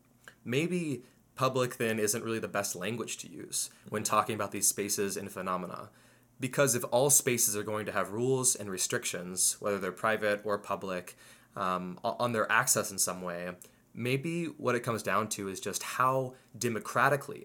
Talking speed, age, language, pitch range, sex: 170 wpm, 20-39, English, 105-125 Hz, male